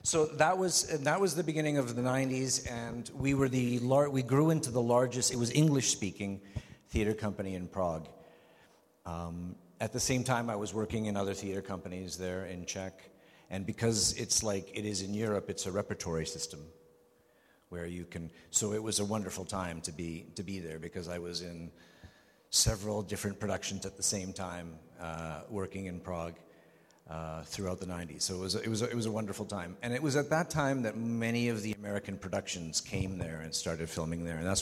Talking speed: 205 wpm